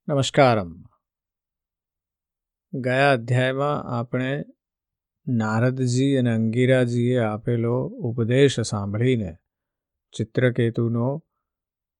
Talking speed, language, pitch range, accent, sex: 60 wpm, Gujarati, 110-125 Hz, native, male